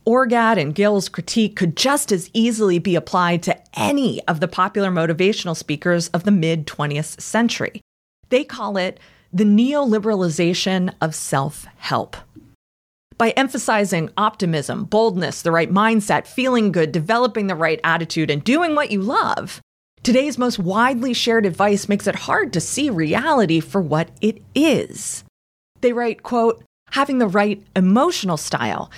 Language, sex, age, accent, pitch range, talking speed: English, female, 30-49, American, 175-235 Hz, 145 wpm